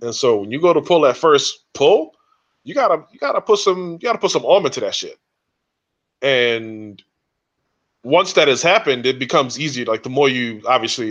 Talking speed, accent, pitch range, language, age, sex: 200 wpm, American, 110-185 Hz, English, 20-39, male